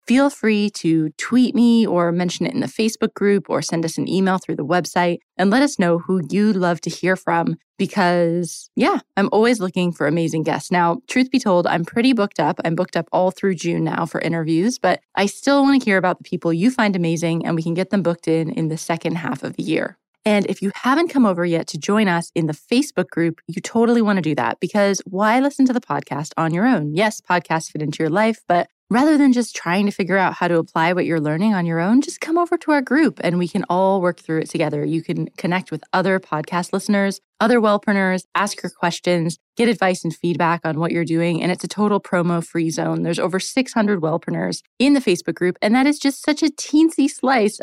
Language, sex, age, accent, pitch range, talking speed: English, female, 20-39, American, 170-220 Hz, 240 wpm